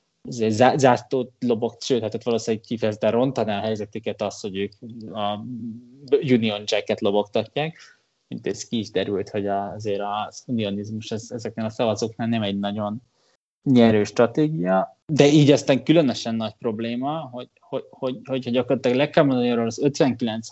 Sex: male